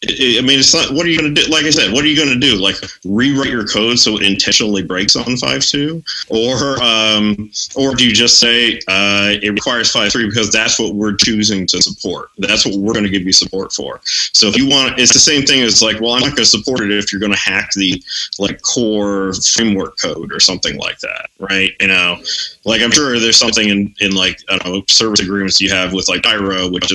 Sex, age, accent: male, 30-49, American